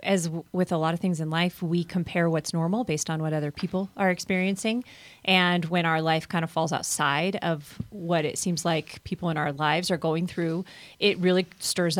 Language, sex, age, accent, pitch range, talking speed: English, female, 30-49, American, 165-195 Hz, 210 wpm